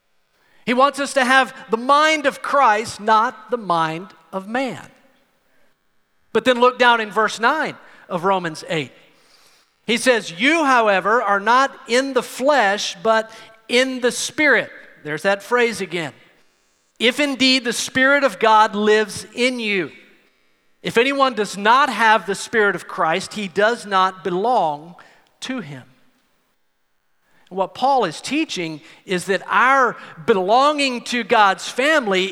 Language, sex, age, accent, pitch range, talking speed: English, male, 40-59, American, 205-270 Hz, 140 wpm